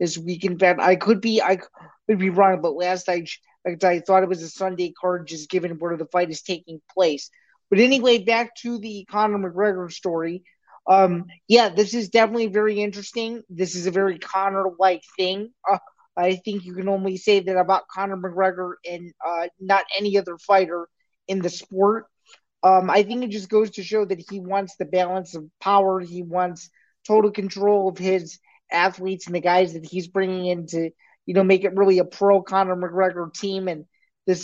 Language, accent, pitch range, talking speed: English, American, 180-200 Hz, 195 wpm